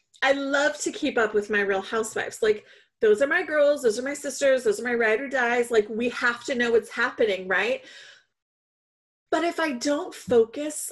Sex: female